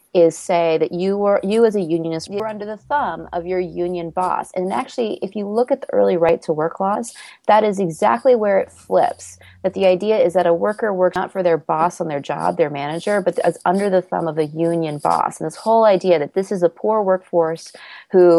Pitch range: 165-200 Hz